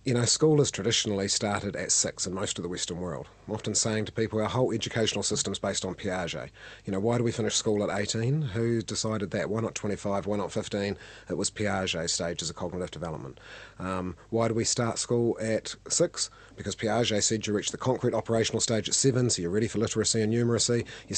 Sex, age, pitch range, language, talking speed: male, 30-49, 100-115 Hz, English, 225 wpm